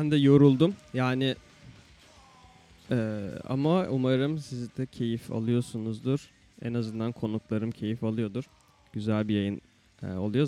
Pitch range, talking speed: 110-145 Hz, 115 wpm